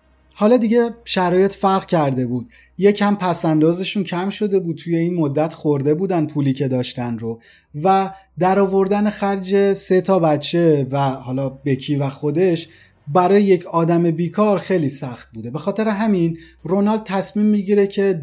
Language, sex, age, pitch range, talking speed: Persian, male, 30-49, 135-185 Hz, 150 wpm